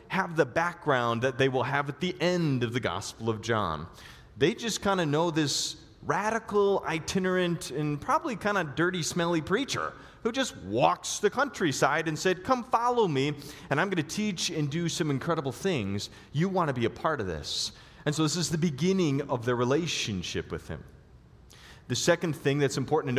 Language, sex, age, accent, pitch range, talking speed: English, male, 30-49, American, 145-200 Hz, 195 wpm